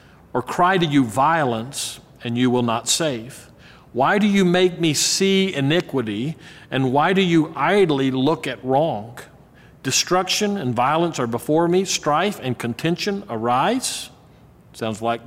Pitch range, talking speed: 120-165 Hz, 145 wpm